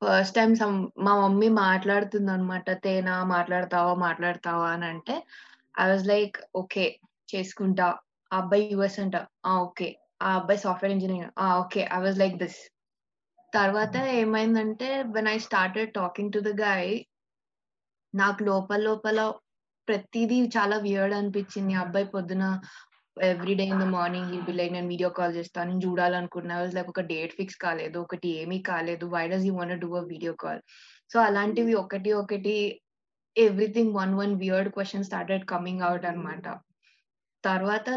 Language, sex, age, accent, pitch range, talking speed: Telugu, female, 20-39, native, 180-205 Hz, 145 wpm